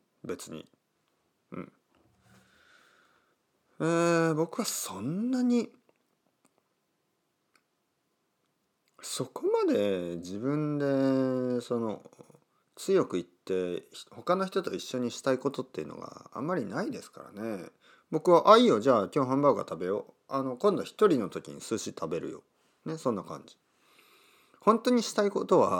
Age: 40-59